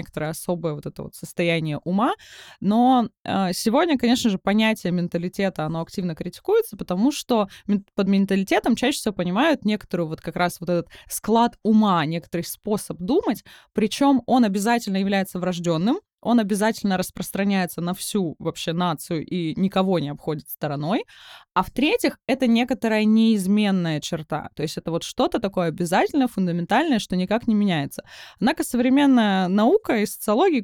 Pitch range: 175-225 Hz